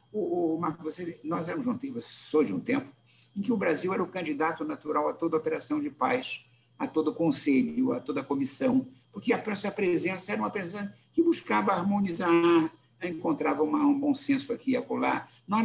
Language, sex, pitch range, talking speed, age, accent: Portuguese, male, 155-255 Hz, 180 wpm, 60-79, Brazilian